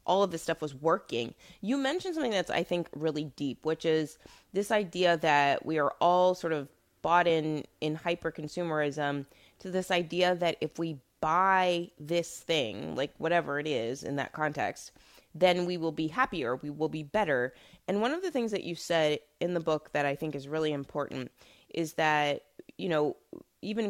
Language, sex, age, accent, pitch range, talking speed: English, female, 20-39, American, 145-180 Hz, 190 wpm